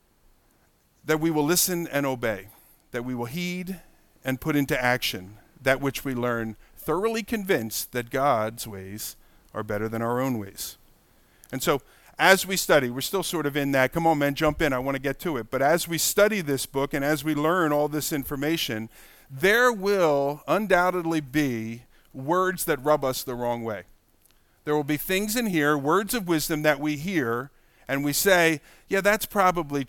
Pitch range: 125-165 Hz